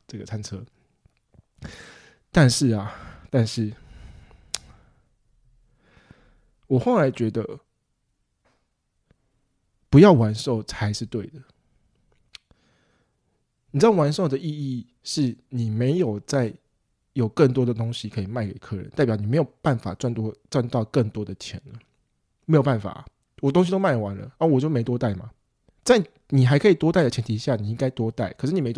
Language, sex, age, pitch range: English, male, 20-39, 110-145 Hz